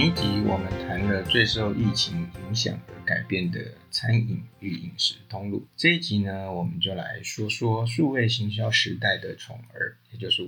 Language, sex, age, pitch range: Chinese, male, 50-69, 95-120 Hz